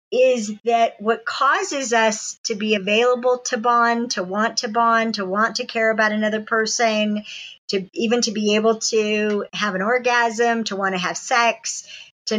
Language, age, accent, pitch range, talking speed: English, 50-69, American, 210-260 Hz, 175 wpm